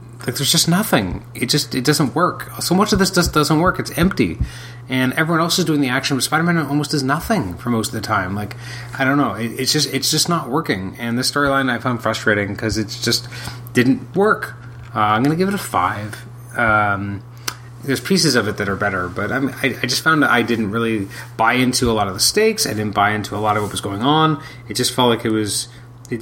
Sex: male